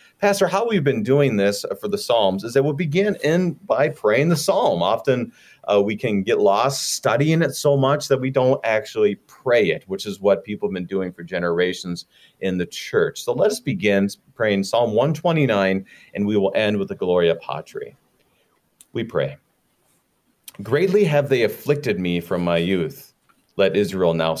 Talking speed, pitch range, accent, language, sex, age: 175 wpm, 105-145 Hz, American, English, male, 40-59